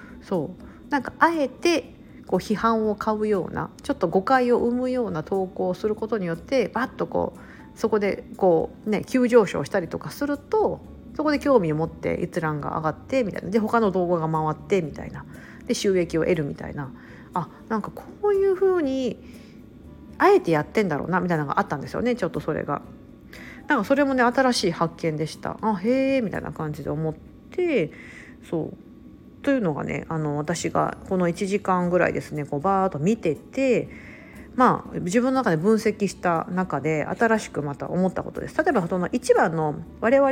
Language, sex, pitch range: Japanese, female, 170-250 Hz